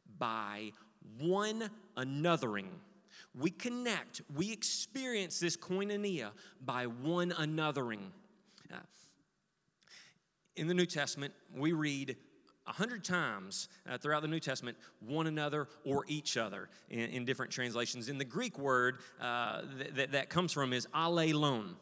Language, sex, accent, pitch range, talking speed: English, male, American, 130-180 Hz, 120 wpm